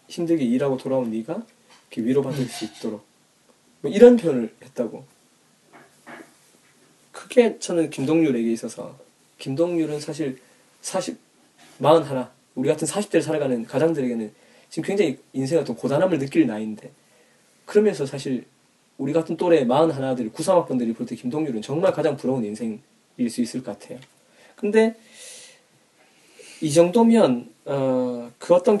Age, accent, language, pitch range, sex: 20-39, native, Korean, 125-165 Hz, male